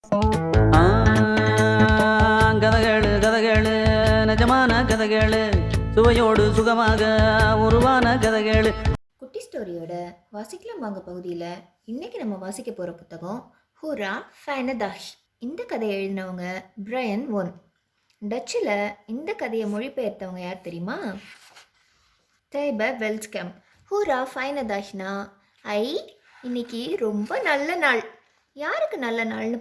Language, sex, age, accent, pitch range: Tamil, female, 20-39, native, 185-255 Hz